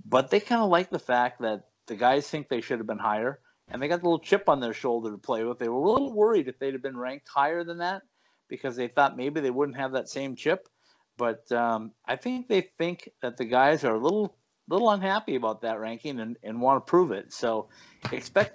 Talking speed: 250 wpm